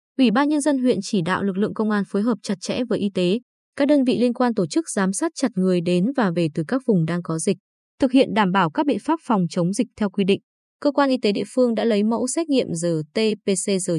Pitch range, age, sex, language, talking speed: 185-255 Hz, 20-39, female, Vietnamese, 270 wpm